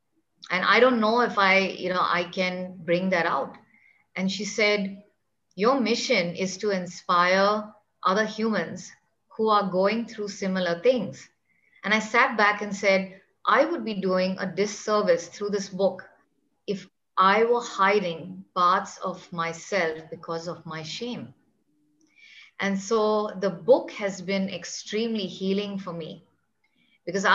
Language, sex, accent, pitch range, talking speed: English, female, Indian, 180-210 Hz, 145 wpm